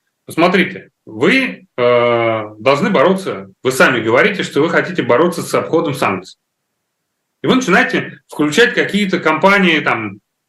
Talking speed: 125 wpm